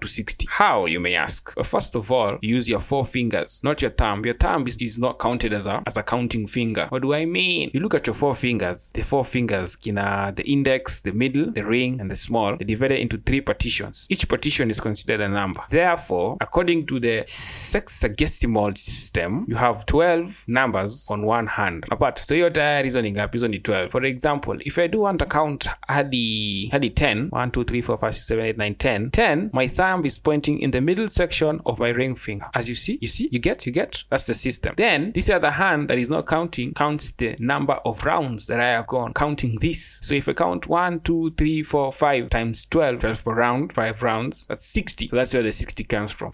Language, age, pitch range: English, 20-39, 110-145 Hz